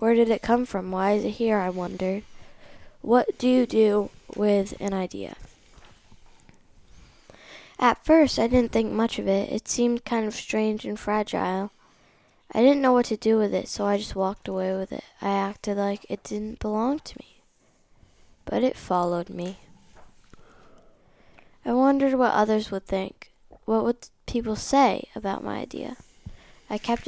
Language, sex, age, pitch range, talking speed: English, female, 10-29, 195-235 Hz, 165 wpm